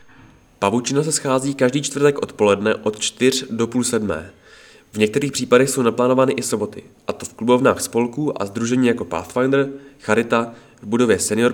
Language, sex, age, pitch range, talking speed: Czech, male, 20-39, 105-135 Hz, 160 wpm